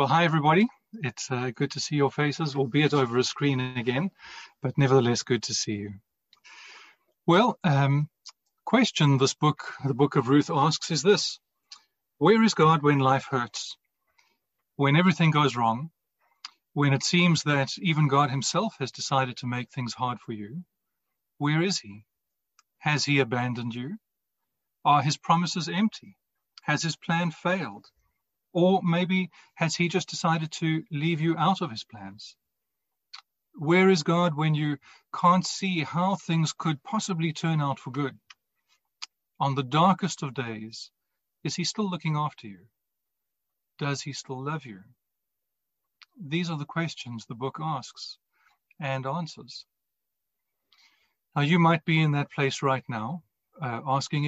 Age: 40-59